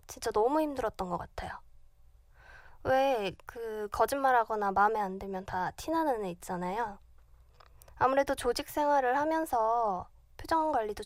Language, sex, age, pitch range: Korean, female, 20-39, 205-280 Hz